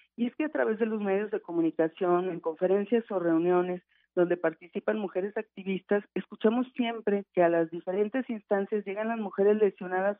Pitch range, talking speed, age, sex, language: 180-220 Hz, 170 wpm, 40-59, female, Spanish